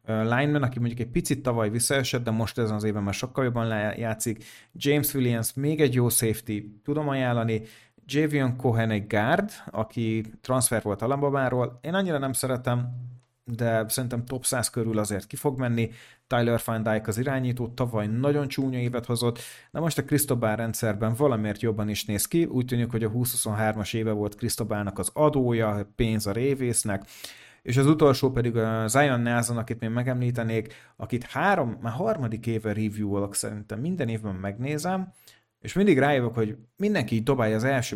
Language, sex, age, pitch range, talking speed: Hungarian, male, 30-49, 110-130 Hz, 170 wpm